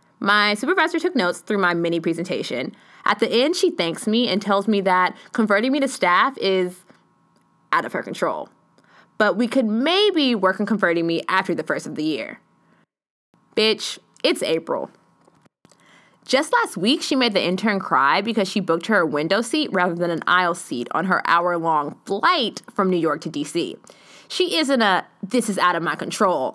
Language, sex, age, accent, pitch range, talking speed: English, female, 20-39, American, 180-255 Hz, 170 wpm